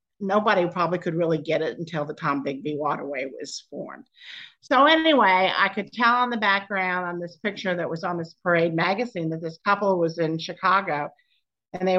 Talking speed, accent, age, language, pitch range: 190 wpm, American, 50-69, English, 160-205 Hz